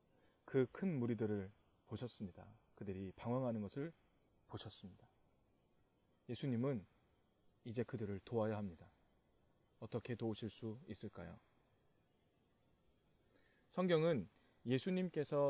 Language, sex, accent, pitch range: Korean, male, native, 110-150 Hz